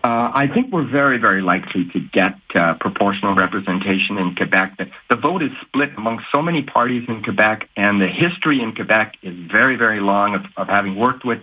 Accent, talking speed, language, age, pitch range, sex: American, 205 wpm, English, 50-69, 100-140 Hz, male